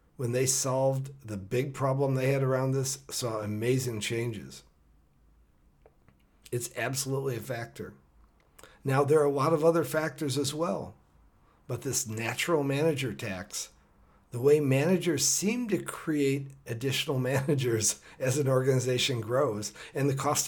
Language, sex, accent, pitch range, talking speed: English, male, American, 110-145 Hz, 140 wpm